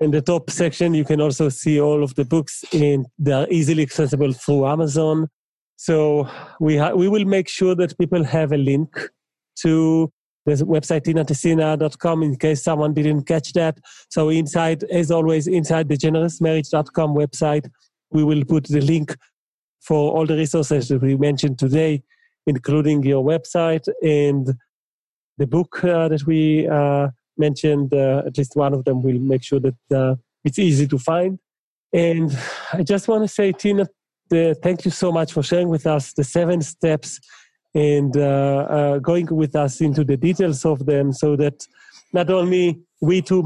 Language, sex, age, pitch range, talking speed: English, male, 40-59, 145-165 Hz, 170 wpm